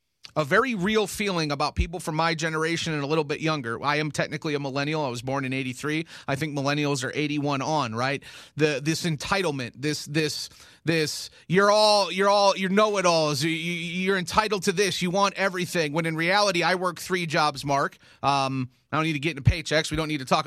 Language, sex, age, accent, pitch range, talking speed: English, male, 30-49, American, 150-200 Hz, 215 wpm